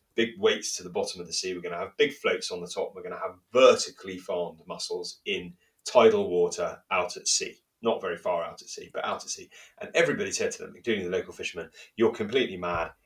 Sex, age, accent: male, 30-49, British